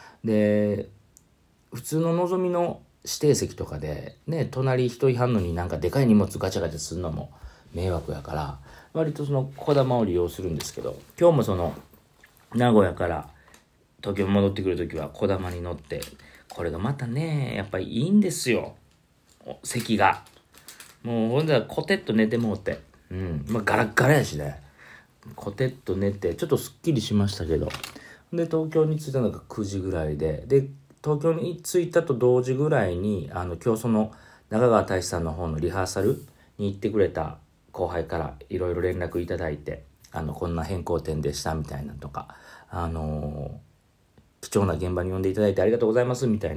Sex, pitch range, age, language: male, 85-125 Hz, 40-59, Japanese